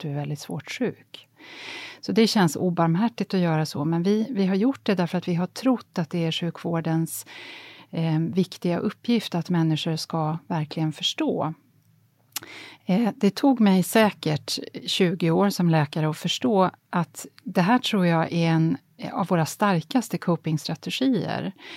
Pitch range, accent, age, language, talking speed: 160-210 Hz, Swedish, 30-49, English, 155 wpm